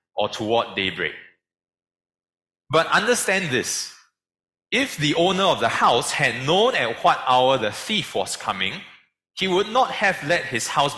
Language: English